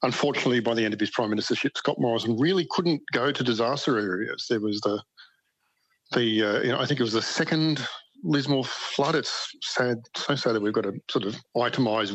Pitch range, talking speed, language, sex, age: 110-130 Hz, 205 wpm, English, male, 50-69